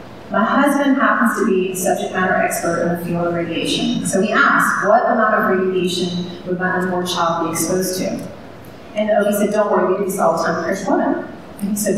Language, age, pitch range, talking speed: English, 30-49, 170-210 Hz, 215 wpm